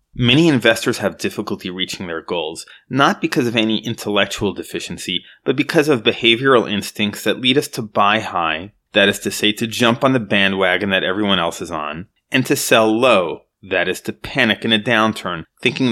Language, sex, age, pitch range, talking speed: English, male, 30-49, 100-120 Hz, 190 wpm